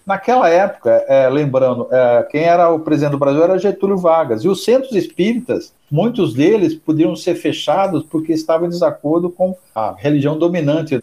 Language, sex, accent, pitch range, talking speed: Portuguese, male, Brazilian, 150-190 Hz, 170 wpm